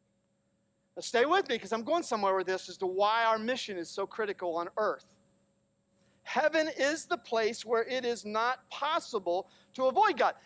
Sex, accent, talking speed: male, American, 180 wpm